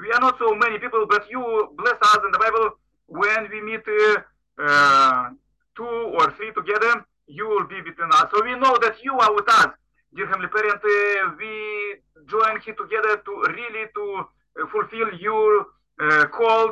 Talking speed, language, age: 185 wpm, English, 40-59